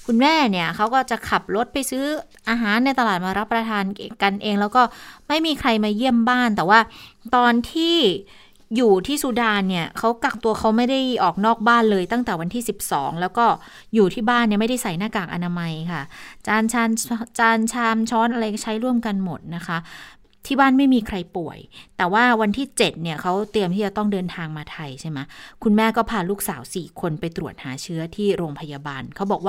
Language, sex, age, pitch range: Thai, female, 20-39, 175-230 Hz